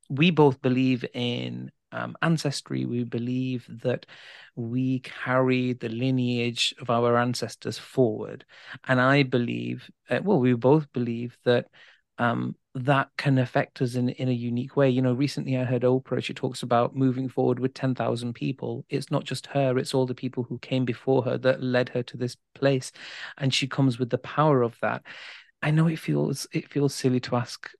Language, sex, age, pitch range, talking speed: English, male, 30-49, 125-140 Hz, 185 wpm